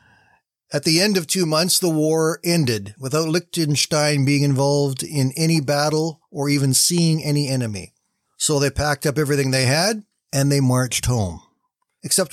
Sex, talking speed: male, 160 wpm